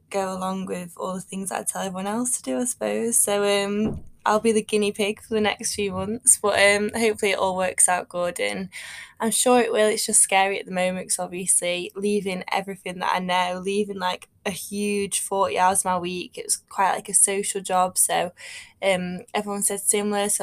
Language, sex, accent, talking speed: English, female, British, 210 wpm